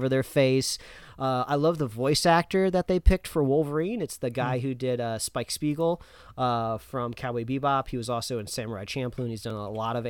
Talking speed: 215 wpm